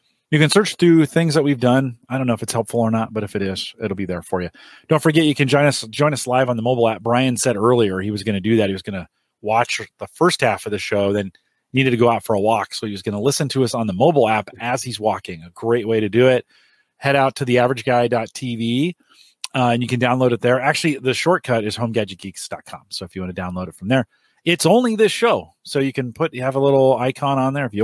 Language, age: English, 30-49